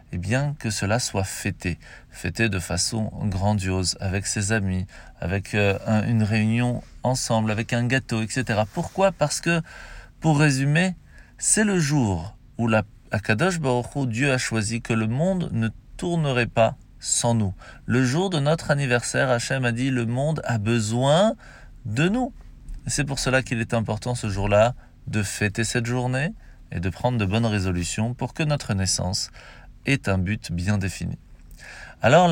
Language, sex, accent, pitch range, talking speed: French, male, French, 110-145 Hz, 170 wpm